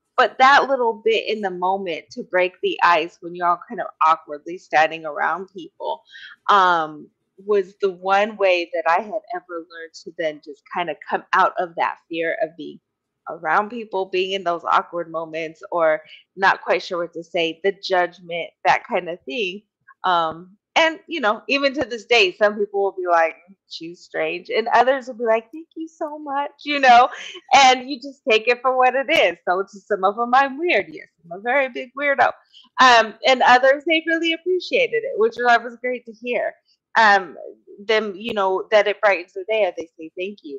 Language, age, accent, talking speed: English, 30-49, American, 200 wpm